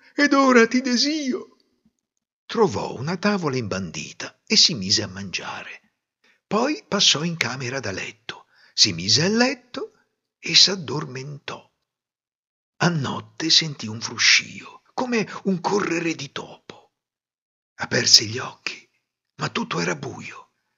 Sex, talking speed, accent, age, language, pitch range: male, 120 wpm, native, 50-69, Italian, 115-185 Hz